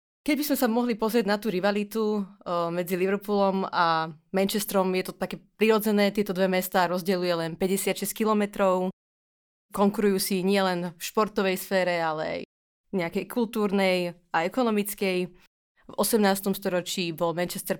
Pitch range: 175-200 Hz